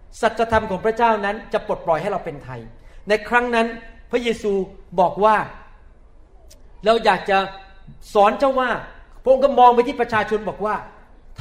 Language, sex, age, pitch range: Thai, male, 40-59, 185-250 Hz